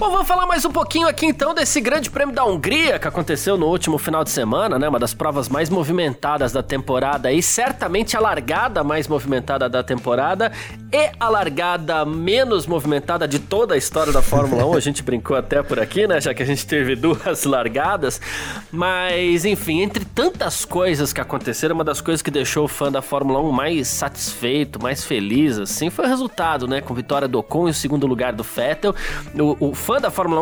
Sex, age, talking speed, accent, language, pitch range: male, 20-39, 205 wpm, Brazilian, Portuguese, 135-200 Hz